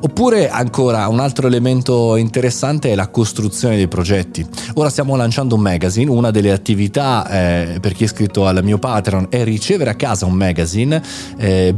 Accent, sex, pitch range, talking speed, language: native, male, 100-140 Hz, 175 wpm, Italian